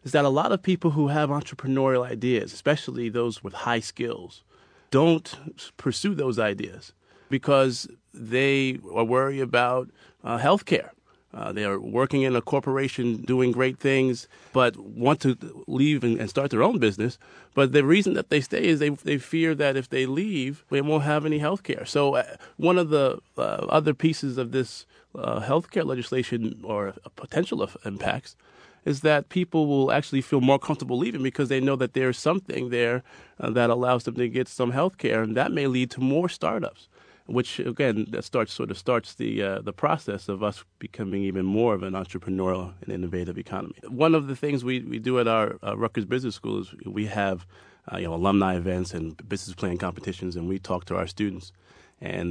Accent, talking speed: American, 195 wpm